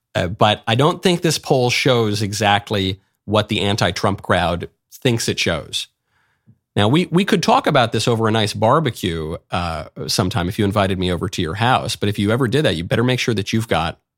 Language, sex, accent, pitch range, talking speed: English, male, American, 95-125 Hz, 210 wpm